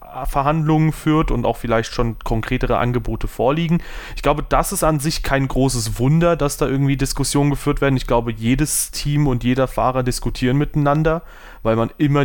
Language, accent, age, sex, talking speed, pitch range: German, German, 30-49, male, 175 wpm, 120-145 Hz